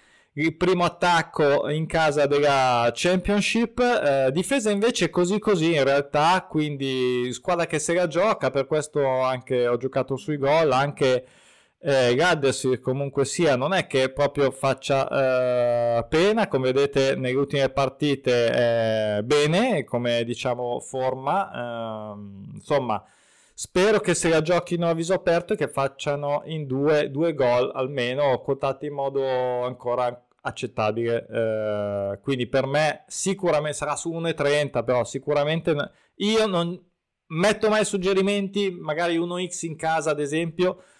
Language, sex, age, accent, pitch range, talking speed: Italian, male, 20-39, native, 130-170 Hz, 135 wpm